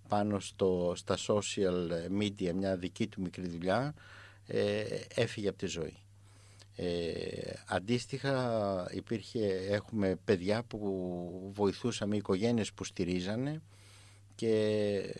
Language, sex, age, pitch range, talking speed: Greek, male, 60-79, 95-105 Hz, 105 wpm